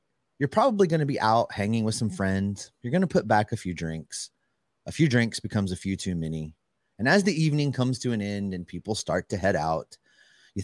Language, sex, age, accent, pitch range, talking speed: English, male, 30-49, American, 90-130 Hz, 220 wpm